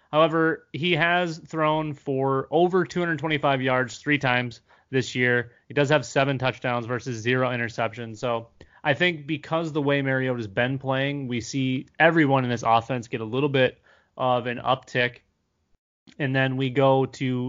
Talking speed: 165 wpm